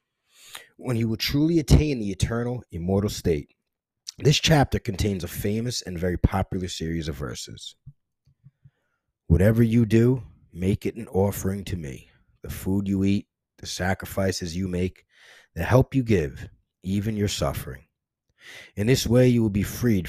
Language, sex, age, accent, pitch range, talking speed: English, male, 30-49, American, 90-115 Hz, 150 wpm